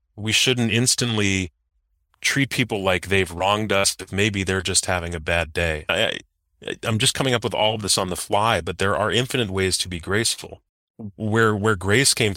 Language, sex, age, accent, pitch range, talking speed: English, male, 30-49, American, 90-110 Hz, 205 wpm